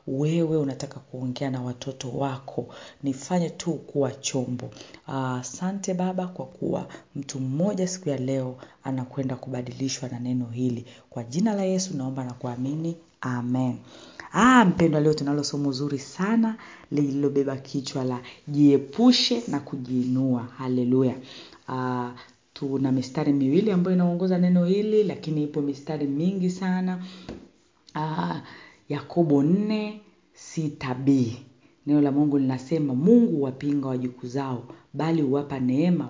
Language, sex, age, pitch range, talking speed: Swahili, female, 40-59, 130-175 Hz, 120 wpm